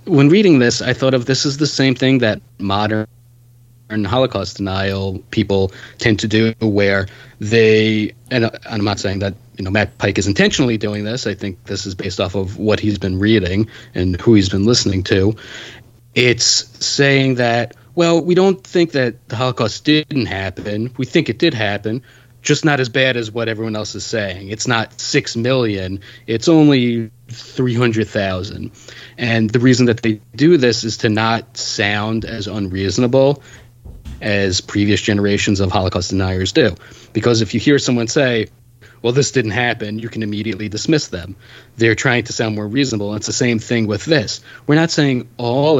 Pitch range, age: 105-125 Hz, 30-49